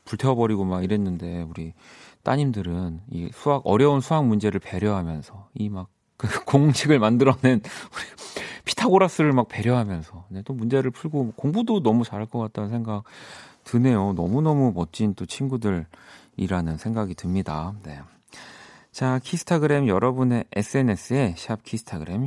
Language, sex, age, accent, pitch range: Korean, male, 40-59, native, 90-130 Hz